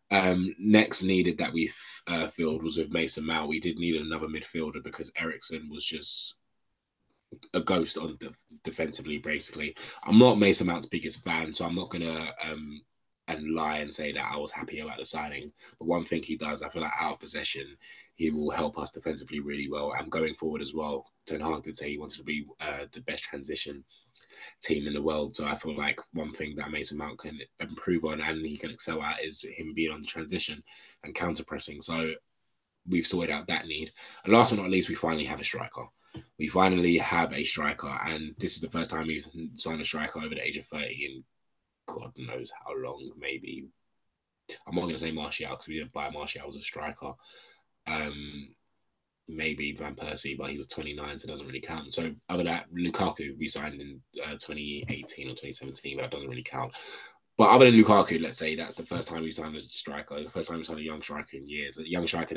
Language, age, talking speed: English, 20-39, 220 wpm